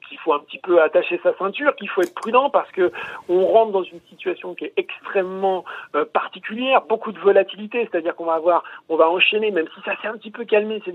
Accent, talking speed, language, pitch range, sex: French, 235 wpm, French, 175-230 Hz, male